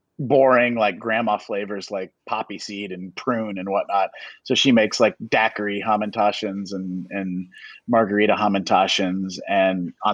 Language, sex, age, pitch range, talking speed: English, male, 30-49, 95-115 Hz, 135 wpm